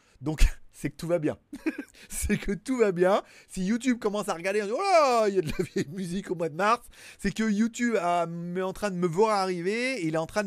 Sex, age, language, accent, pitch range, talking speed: male, 30-49, French, French, 135-210 Hz, 245 wpm